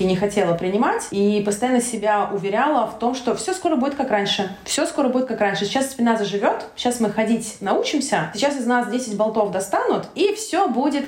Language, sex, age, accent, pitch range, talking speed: Russian, female, 20-39, native, 195-255 Hz, 195 wpm